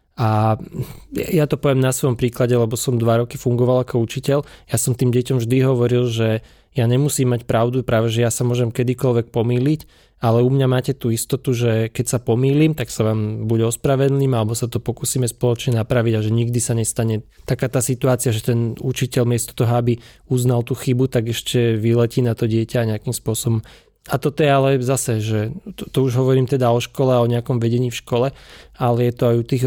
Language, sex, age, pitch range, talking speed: Slovak, male, 20-39, 115-130 Hz, 210 wpm